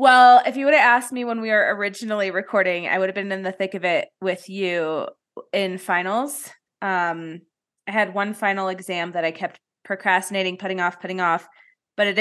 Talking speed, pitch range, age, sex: 200 wpm, 185-230 Hz, 20-39, female